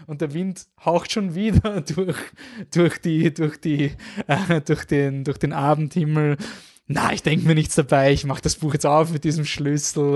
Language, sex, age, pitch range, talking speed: German, male, 20-39, 120-145 Hz, 190 wpm